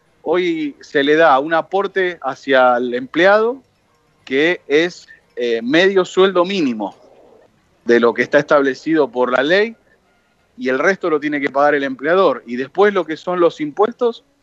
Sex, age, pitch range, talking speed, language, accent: male, 40-59, 130-180 Hz, 160 wpm, Spanish, Argentinian